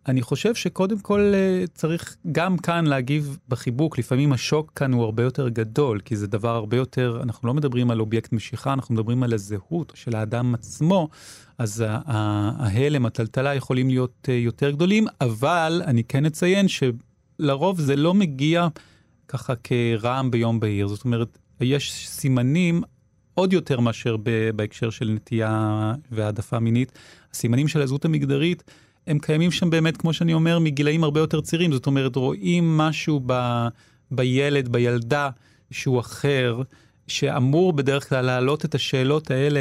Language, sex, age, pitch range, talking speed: Hebrew, male, 30-49, 120-150 Hz, 145 wpm